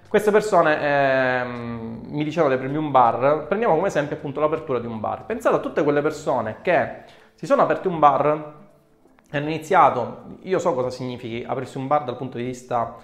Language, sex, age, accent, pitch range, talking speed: Italian, male, 20-39, native, 120-145 Hz, 195 wpm